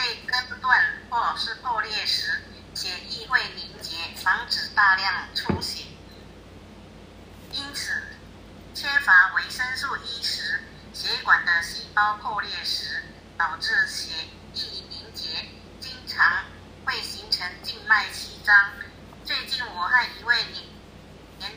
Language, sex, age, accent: Chinese, female, 50-69, American